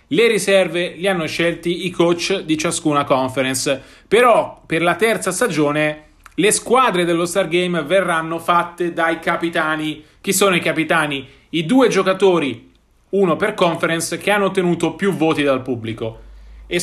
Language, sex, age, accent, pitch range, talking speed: Italian, male, 30-49, native, 150-195 Hz, 145 wpm